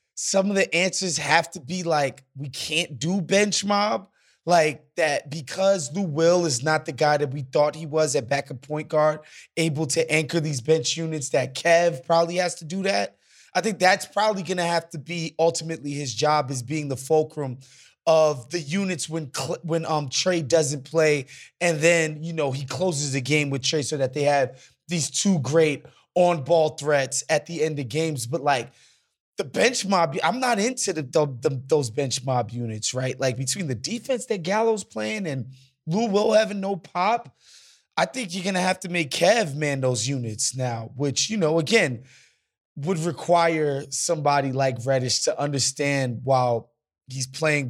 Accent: American